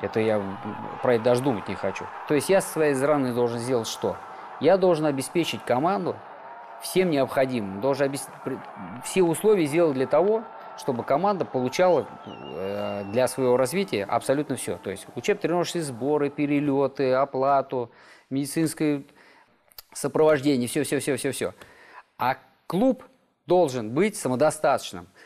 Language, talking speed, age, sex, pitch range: Russian, 130 wpm, 20-39, male, 110-145 Hz